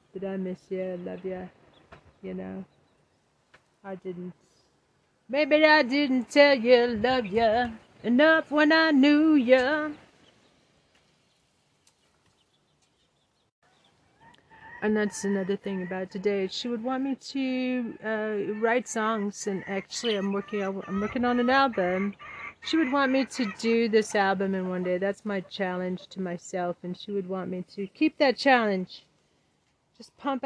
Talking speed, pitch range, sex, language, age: 145 wpm, 185-235 Hz, female, English, 30-49